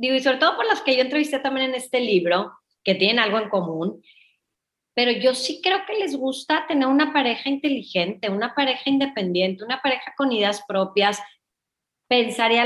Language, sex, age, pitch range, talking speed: English, female, 30-49, 200-270 Hz, 180 wpm